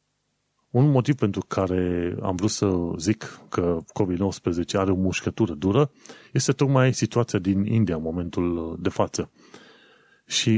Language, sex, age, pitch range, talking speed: Romanian, male, 30-49, 95-115 Hz, 135 wpm